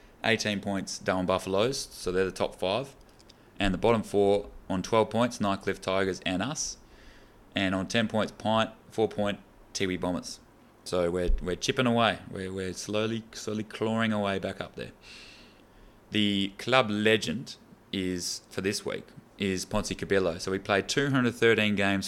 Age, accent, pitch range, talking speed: 20-39, Australian, 95-110 Hz, 160 wpm